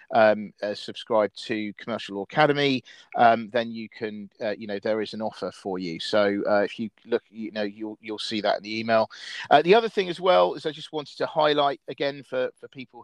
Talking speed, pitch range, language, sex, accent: 230 wpm, 110-130 Hz, English, male, British